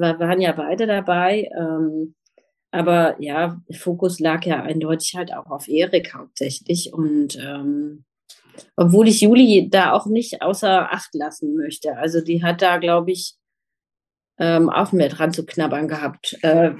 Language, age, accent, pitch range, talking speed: German, 30-49, German, 160-200 Hz, 155 wpm